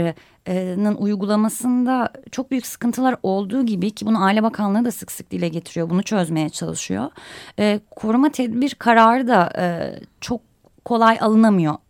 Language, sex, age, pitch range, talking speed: Turkish, female, 30-49, 195-260 Hz, 130 wpm